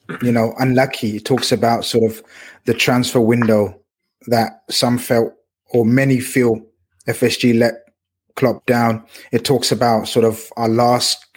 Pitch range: 115-150 Hz